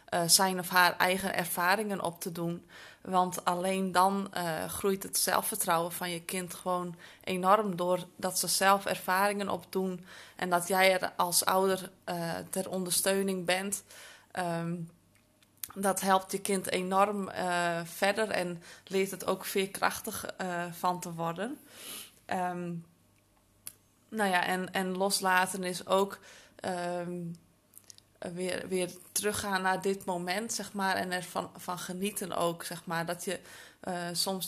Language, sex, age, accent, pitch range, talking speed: Dutch, female, 20-39, Dutch, 175-190 Hz, 140 wpm